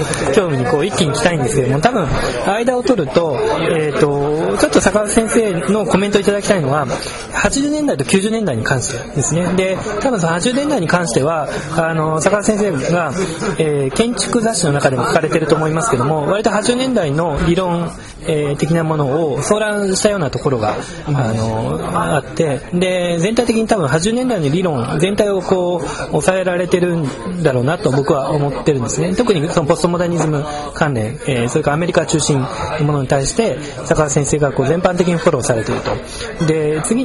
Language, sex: Japanese, male